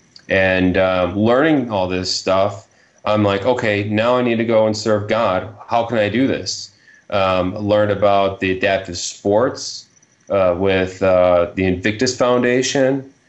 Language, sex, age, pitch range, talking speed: English, male, 30-49, 95-120 Hz, 160 wpm